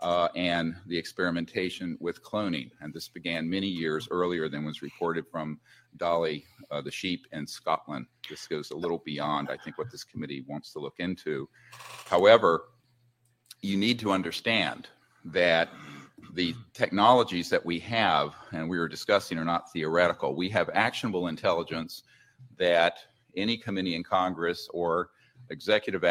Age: 50-69